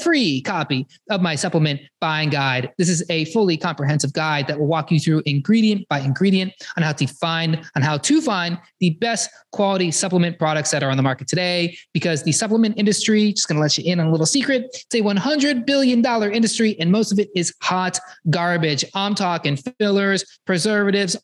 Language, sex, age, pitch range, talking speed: English, male, 20-39, 155-205 Hz, 200 wpm